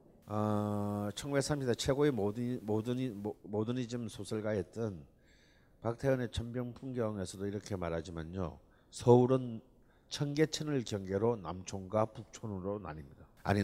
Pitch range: 100-130 Hz